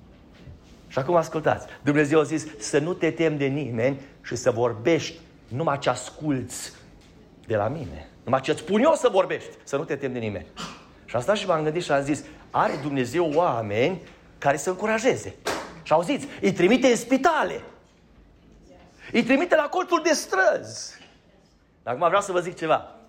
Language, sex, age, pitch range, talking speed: Romanian, male, 30-49, 150-220 Hz, 175 wpm